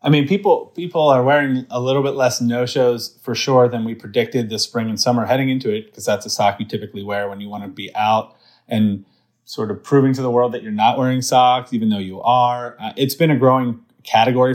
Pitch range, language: 110-130 Hz, English